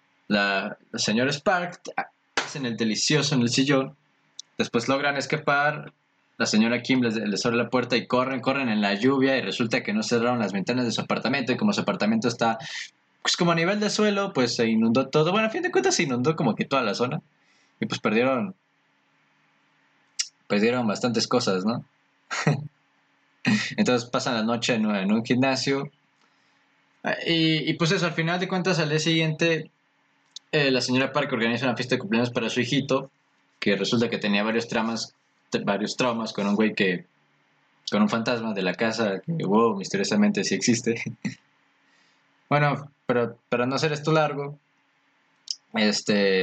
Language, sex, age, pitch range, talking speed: English, male, 20-39, 115-150 Hz, 175 wpm